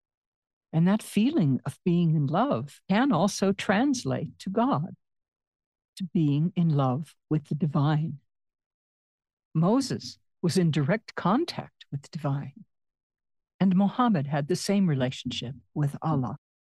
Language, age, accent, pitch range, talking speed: English, 60-79, American, 140-180 Hz, 125 wpm